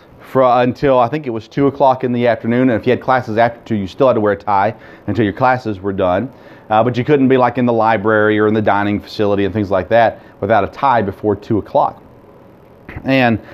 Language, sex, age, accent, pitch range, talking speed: English, male, 30-49, American, 110-135 Hz, 240 wpm